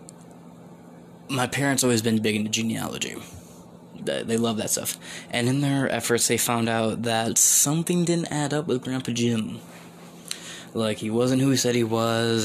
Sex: male